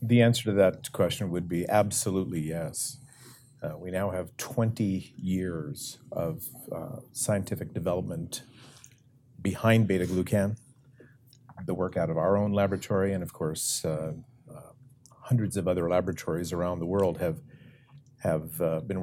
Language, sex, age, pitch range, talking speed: English, male, 50-69, 90-130 Hz, 140 wpm